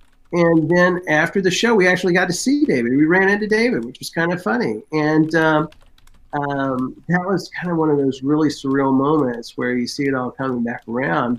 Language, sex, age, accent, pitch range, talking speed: English, male, 50-69, American, 125-145 Hz, 215 wpm